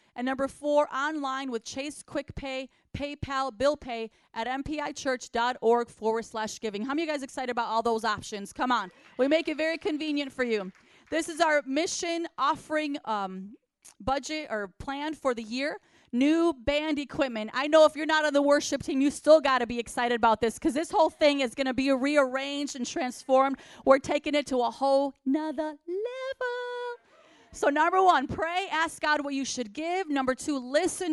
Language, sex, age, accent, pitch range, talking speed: English, female, 30-49, American, 245-305 Hz, 190 wpm